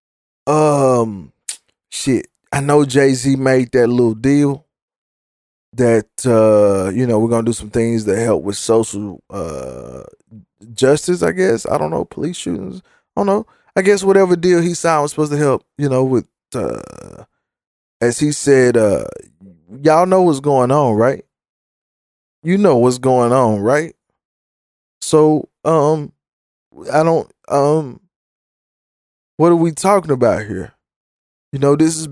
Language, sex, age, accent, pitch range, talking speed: English, male, 20-39, American, 115-145 Hz, 150 wpm